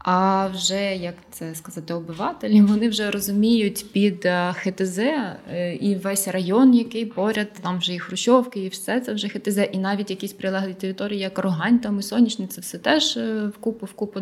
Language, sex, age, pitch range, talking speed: Ukrainian, female, 20-39, 180-215 Hz, 170 wpm